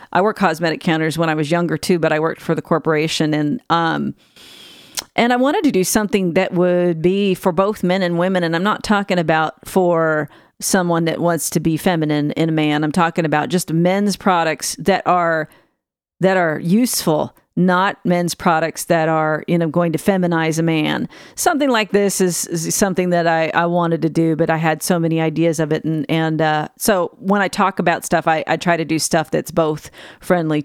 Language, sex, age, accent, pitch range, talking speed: English, female, 40-59, American, 160-195 Hz, 210 wpm